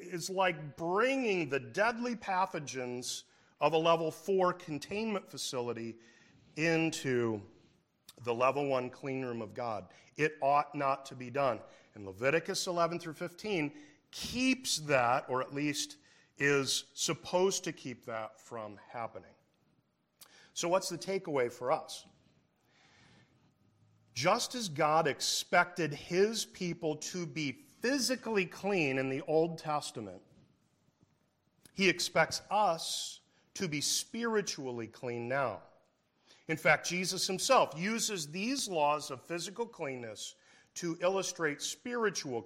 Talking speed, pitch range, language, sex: 120 wpm, 130-180 Hz, English, male